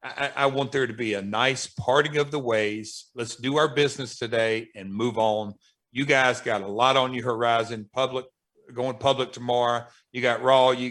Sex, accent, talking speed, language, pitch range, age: male, American, 200 wpm, English, 115-140 Hz, 50-69